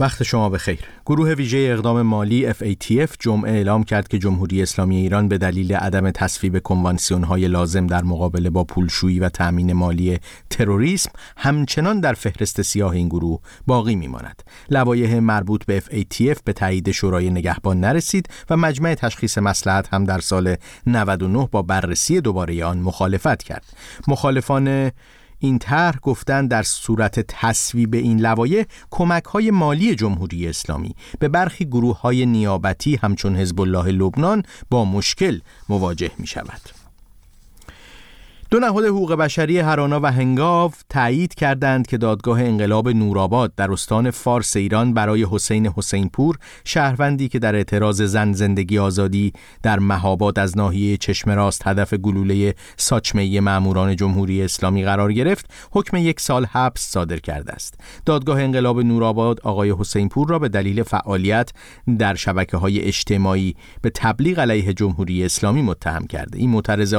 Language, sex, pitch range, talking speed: Persian, male, 95-125 Hz, 140 wpm